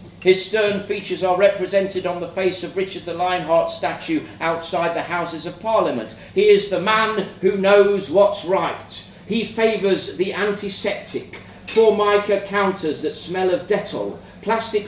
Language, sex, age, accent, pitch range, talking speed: English, male, 40-59, British, 145-205 Hz, 150 wpm